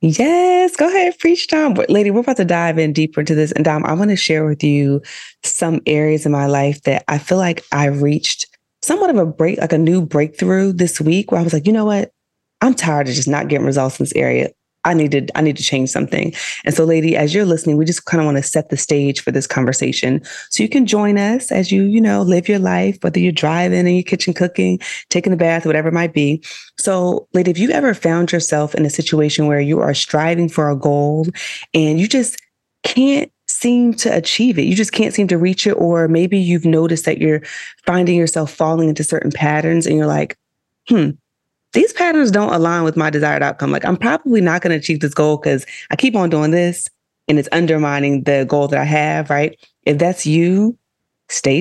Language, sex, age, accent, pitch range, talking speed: English, female, 20-39, American, 150-190 Hz, 230 wpm